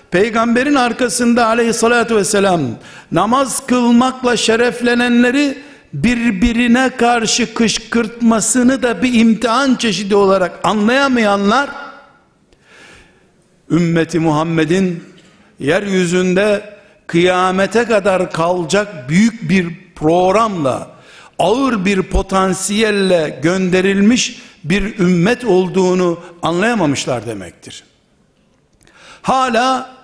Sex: male